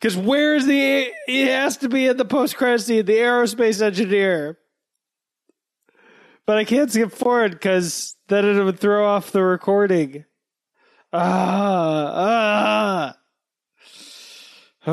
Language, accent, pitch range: English, American, 170-230 Hz